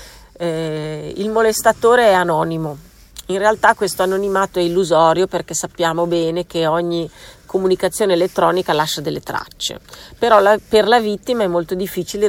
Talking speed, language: 135 wpm, Italian